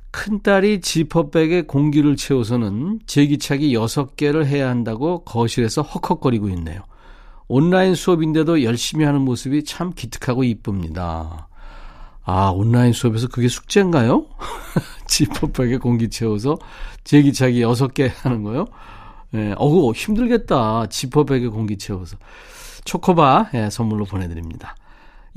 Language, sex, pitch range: Korean, male, 115-165 Hz